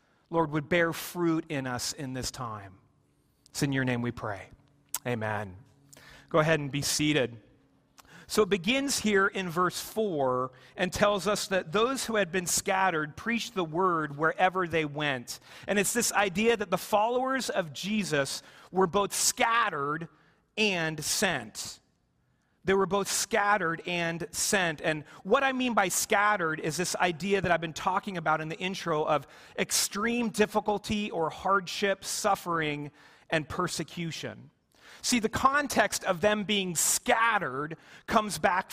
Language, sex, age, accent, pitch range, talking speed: English, male, 40-59, American, 150-205 Hz, 150 wpm